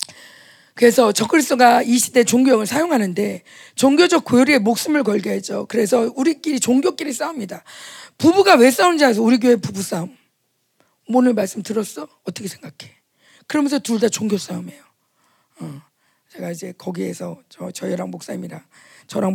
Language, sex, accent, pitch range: Korean, female, native, 215-310 Hz